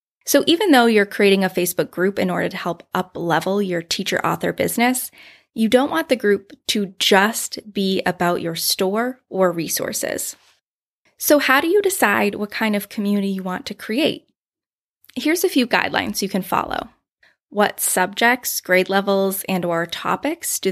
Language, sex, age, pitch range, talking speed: English, female, 10-29, 180-240 Hz, 165 wpm